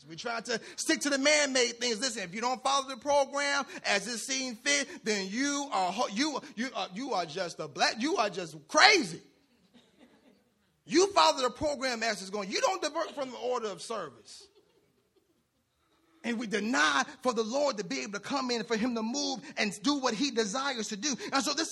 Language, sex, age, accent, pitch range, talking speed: English, male, 30-49, American, 195-275 Hz, 210 wpm